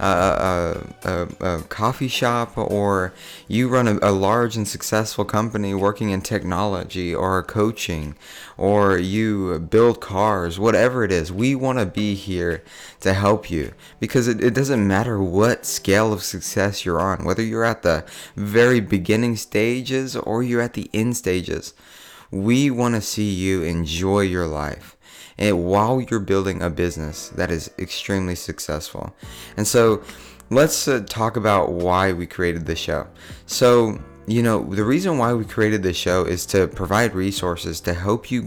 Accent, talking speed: American, 160 wpm